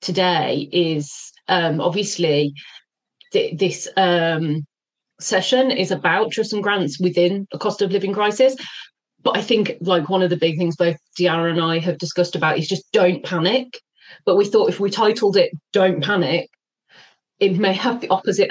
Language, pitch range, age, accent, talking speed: English, 175-225 Hz, 30-49, British, 170 wpm